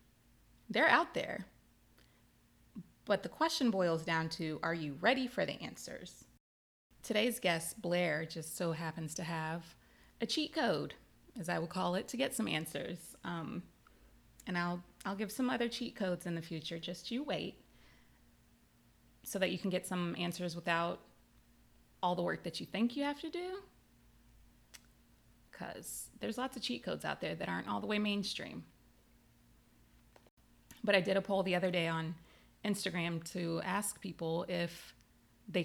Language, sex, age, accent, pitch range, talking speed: English, female, 20-39, American, 170-215 Hz, 165 wpm